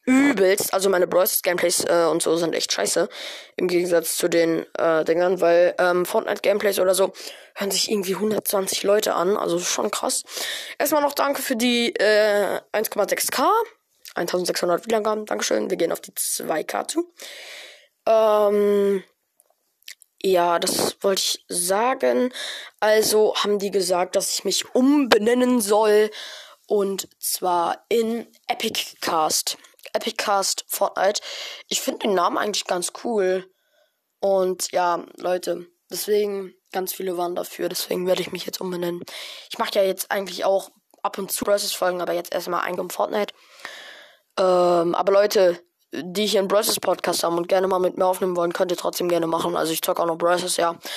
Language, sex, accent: German, female, German